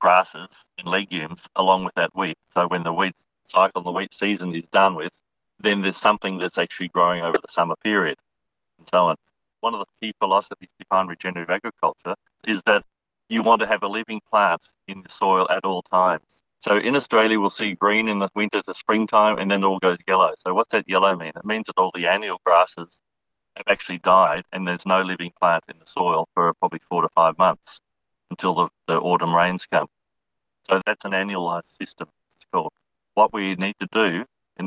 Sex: male